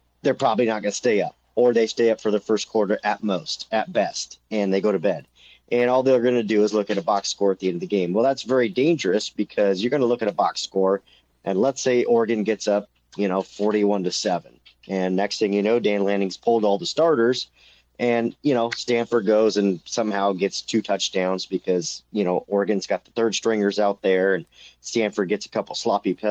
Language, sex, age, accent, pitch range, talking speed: English, male, 40-59, American, 100-120 Hz, 235 wpm